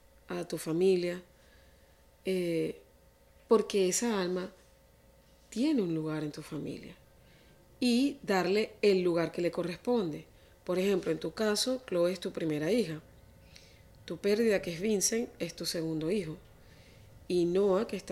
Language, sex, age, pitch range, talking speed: Spanish, female, 40-59, 170-220 Hz, 140 wpm